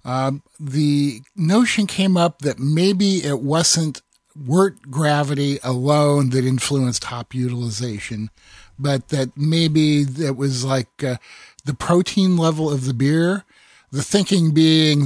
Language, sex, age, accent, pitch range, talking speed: English, male, 50-69, American, 130-165 Hz, 130 wpm